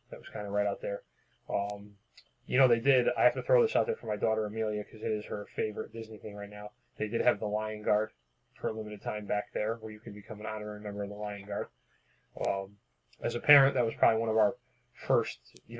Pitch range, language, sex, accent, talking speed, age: 100-120 Hz, English, male, American, 255 wpm, 20-39